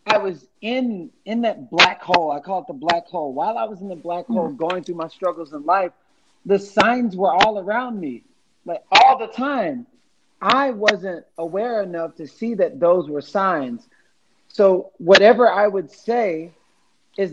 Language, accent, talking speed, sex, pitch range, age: English, American, 180 wpm, male, 170-215 Hz, 40-59